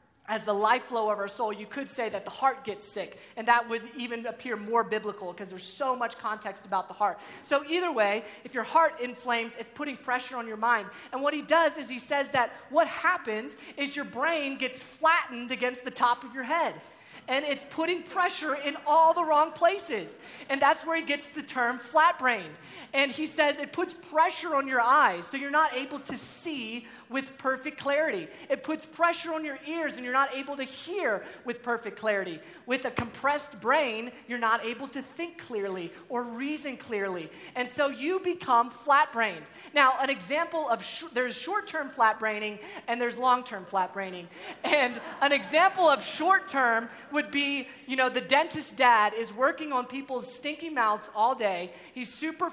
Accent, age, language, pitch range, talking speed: American, 30-49, English, 230-295 Hz, 205 wpm